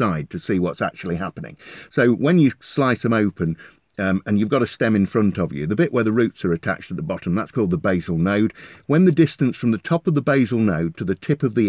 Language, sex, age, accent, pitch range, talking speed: English, male, 50-69, British, 95-140 Hz, 260 wpm